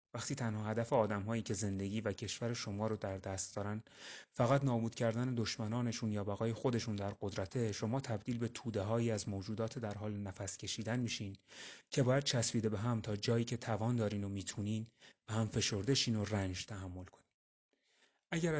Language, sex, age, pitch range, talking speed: Persian, male, 30-49, 105-120 Hz, 175 wpm